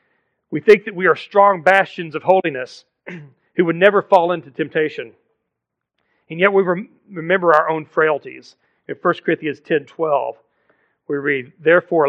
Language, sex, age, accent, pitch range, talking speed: English, male, 40-59, American, 160-200 Hz, 150 wpm